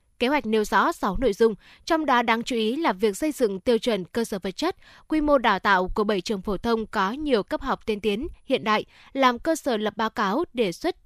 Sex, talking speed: female, 255 wpm